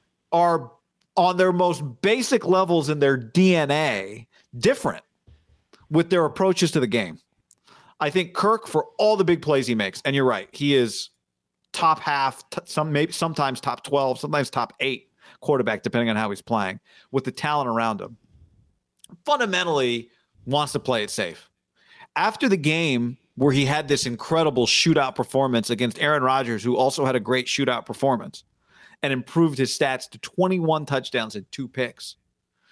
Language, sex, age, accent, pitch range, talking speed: English, male, 40-59, American, 130-175 Hz, 160 wpm